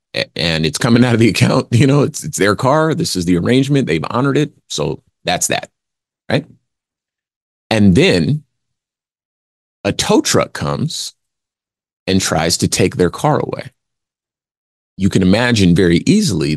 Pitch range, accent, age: 85-120 Hz, American, 30-49